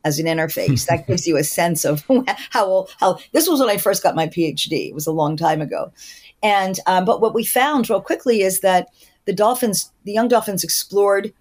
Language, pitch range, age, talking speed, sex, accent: English, 160-210 Hz, 50-69, 215 wpm, female, American